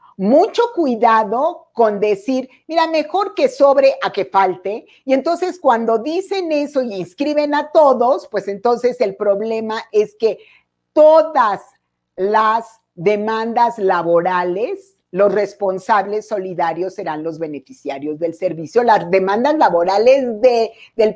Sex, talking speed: female, 120 wpm